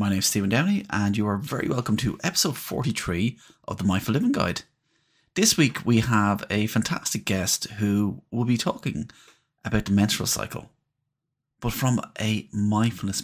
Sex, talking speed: male, 170 wpm